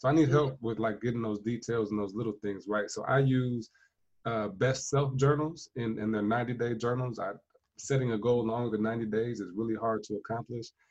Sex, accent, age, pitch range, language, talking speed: male, American, 20-39, 110-130 Hz, English, 220 wpm